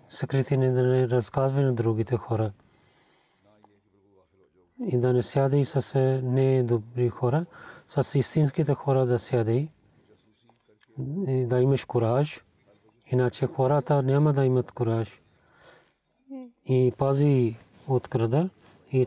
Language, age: Bulgarian, 40-59